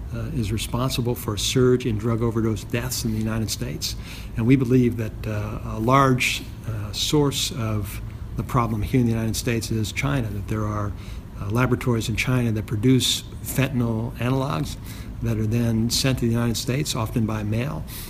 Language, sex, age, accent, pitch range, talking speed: English, male, 60-79, American, 110-130 Hz, 180 wpm